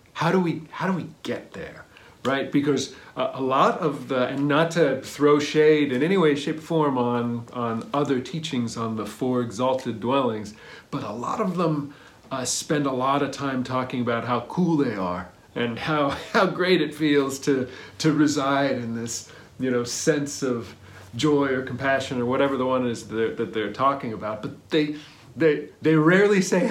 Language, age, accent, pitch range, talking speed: English, 40-59, American, 125-155 Hz, 195 wpm